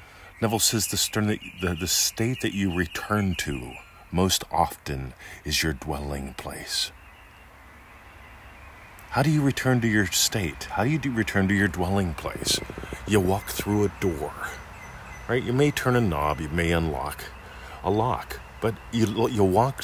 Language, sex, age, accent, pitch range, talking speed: English, male, 40-59, American, 75-110 Hz, 150 wpm